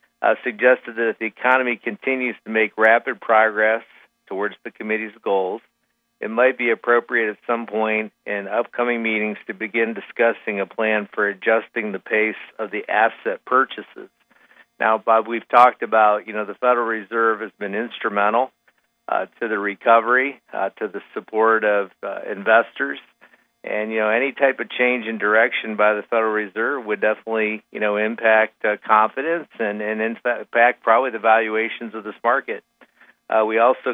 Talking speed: 165 wpm